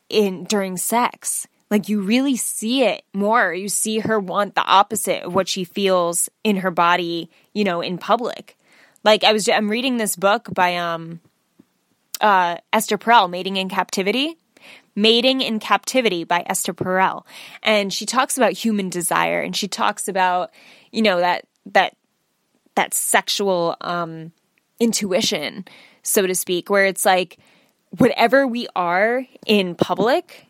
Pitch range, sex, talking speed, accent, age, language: 185-220 Hz, female, 150 wpm, American, 10-29, English